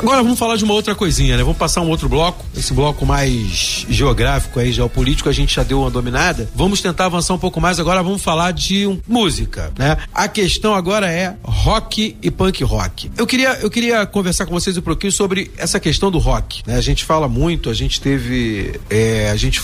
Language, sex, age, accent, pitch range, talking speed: Portuguese, male, 40-59, Brazilian, 130-185 Hz, 210 wpm